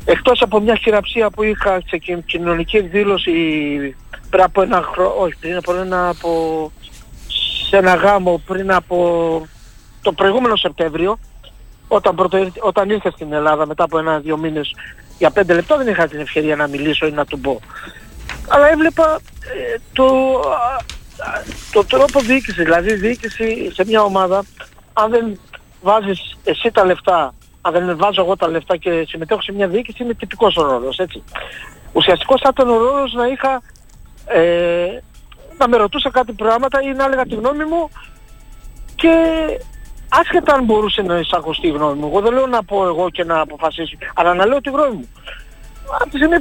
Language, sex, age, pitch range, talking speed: Greek, male, 50-69, 170-255 Hz, 165 wpm